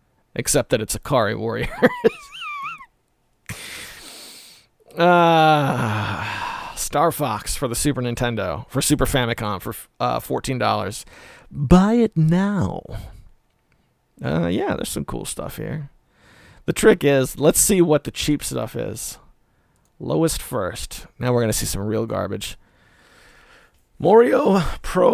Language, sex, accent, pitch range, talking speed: English, male, American, 105-140 Hz, 120 wpm